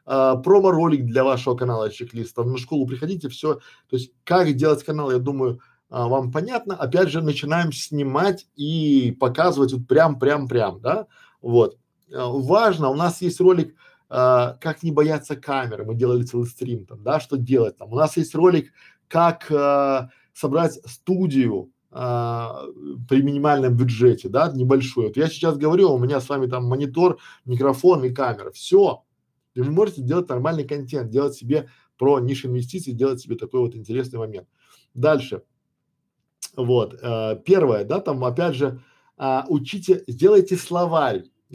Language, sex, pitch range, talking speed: Russian, male, 125-160 Hz, 155 wpm